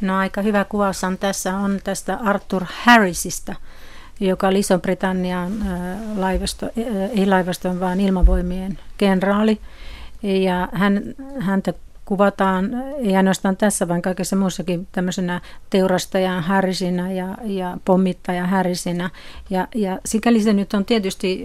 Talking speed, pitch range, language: 120 wpm, 180-200 Hz, Finnish